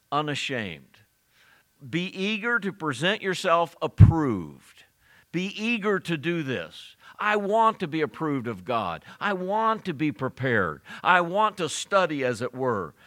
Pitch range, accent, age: 130-175 Hz, American, 50-69